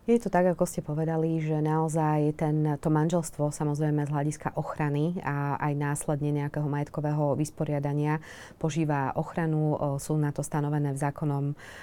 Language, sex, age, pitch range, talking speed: Slovak, female, 20-39, 145-155 Hz, 145 wpm